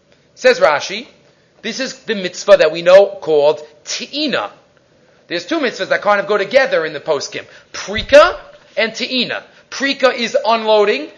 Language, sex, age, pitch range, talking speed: English, male, 30-49, 205-295 Hz, 155 wpm